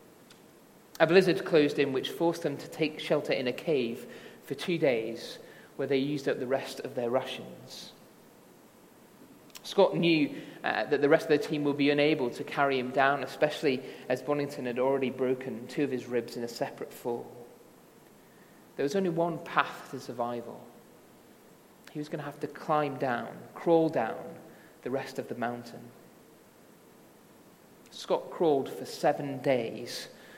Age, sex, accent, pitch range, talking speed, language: 30-49, male, British, 135-155 Hz, 160 wpm, English